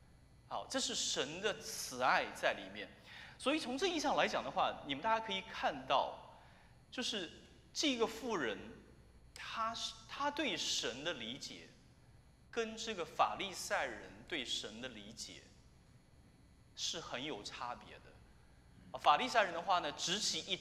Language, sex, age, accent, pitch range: Chinese, male, 30-49, native, 155-255 Hz